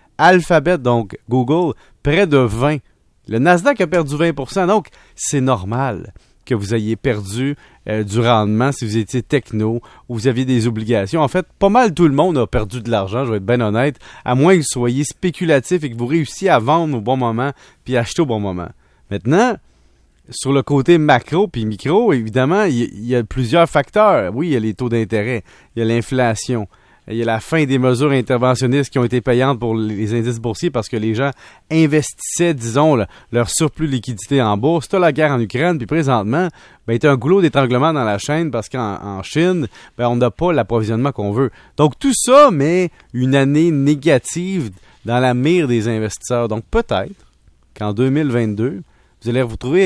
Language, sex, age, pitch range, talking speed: French, male, 30-49, 115-155 Hz, 200 wpm